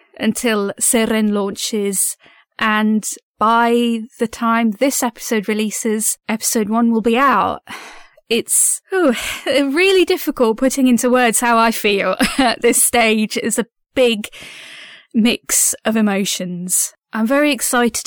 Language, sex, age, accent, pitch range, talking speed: English, female, 20-39, British, 210-245 Hz, 120 wpm